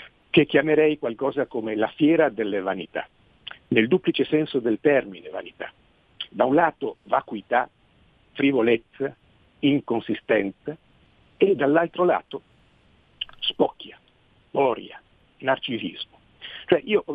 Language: Italian